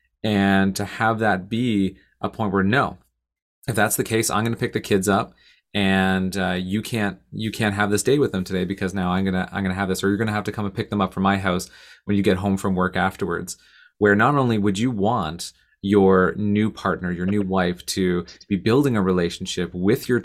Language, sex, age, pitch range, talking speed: English, male, 30-49, 95-105 Hz, 245 wpm